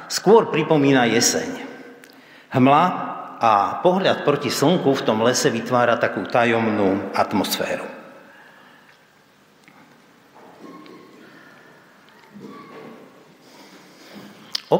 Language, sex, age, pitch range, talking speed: Slovak, male, 50-69, 115-155 Hz, 65 wpm